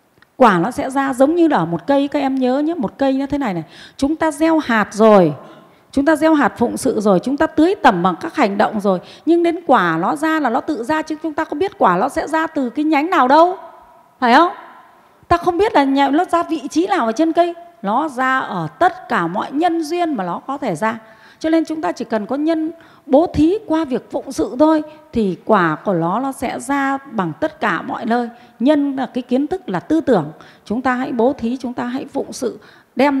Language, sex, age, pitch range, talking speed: Vietnamese, female, 20-39, 220-315 Hz, 250 wpm